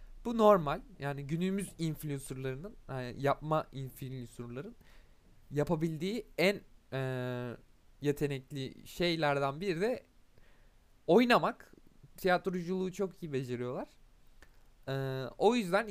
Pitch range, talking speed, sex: 140-200 Hz, 85 wpm, male